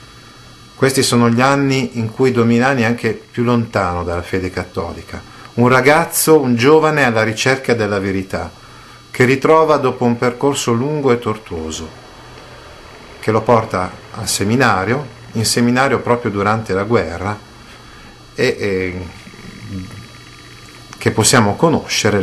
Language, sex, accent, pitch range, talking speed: Italian, male, native, 95-120 Hz, 125 wpm